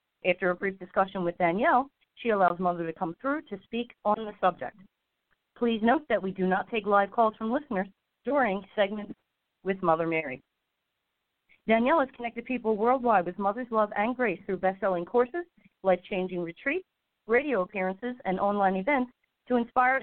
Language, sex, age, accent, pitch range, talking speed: English, female, 40-59, American, 185-240 Hz, 165 wpm